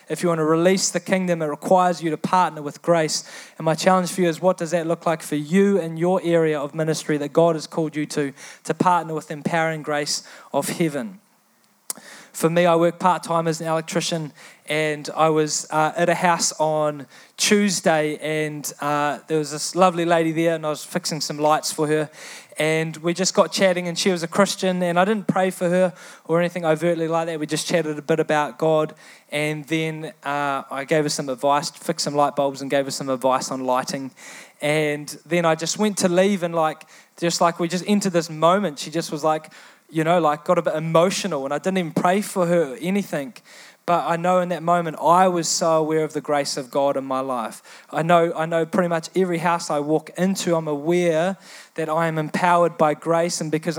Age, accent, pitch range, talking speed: 20-39, Australian, 155-180 Hz, 225 wpm